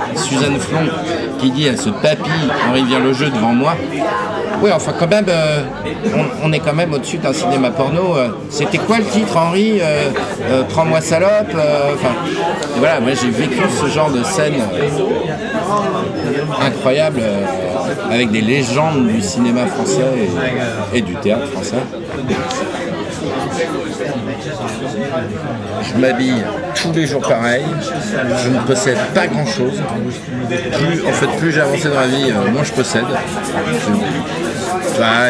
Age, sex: 50-69, male